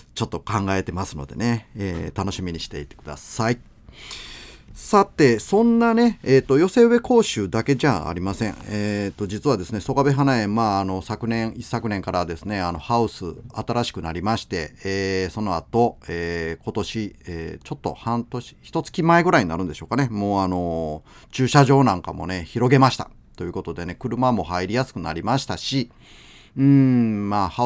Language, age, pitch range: Japanese, 30-49, 90-140 Hz